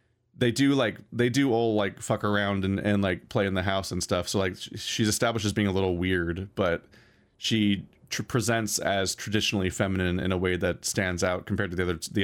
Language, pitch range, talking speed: English, 95-115 Hz, 215 wpm